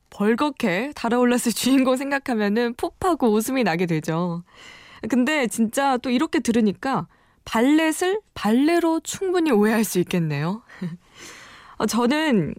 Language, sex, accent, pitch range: Korean, female, native, 185-275 Hz